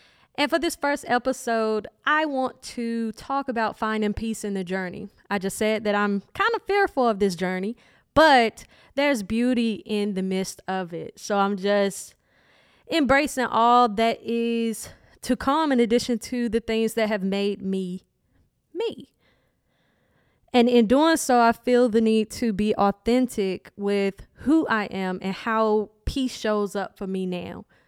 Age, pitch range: 20-39, 200-240 Hz